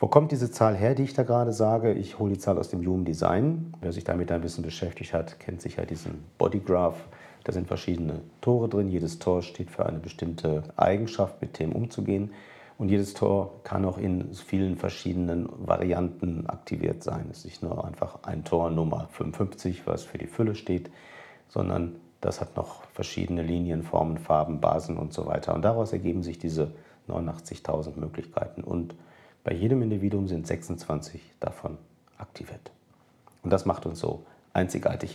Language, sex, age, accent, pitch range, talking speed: German, male, 50-69, German, 85-110 Hz, 175 wpm